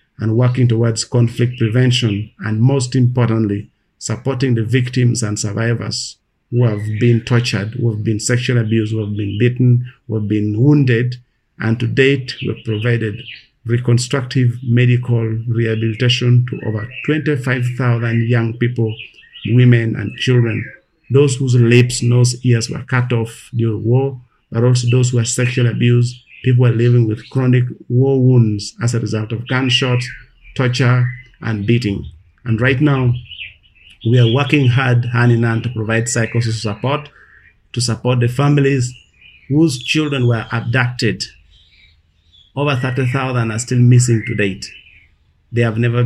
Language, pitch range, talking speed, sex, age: English, 110-125 Hz, 140 wpm, male, 50-69